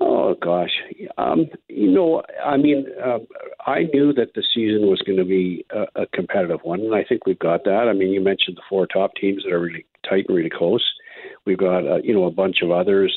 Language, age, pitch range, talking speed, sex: English, 50-69, 95-135 Hz, 235 wpm, male